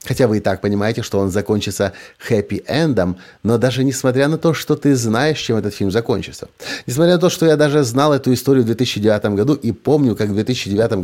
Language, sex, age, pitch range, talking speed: Russian, male, 30-49, 100-135 Hz, 205 wpm